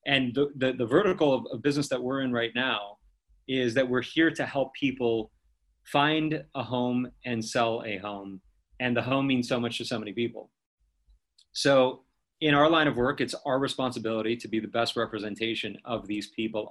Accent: American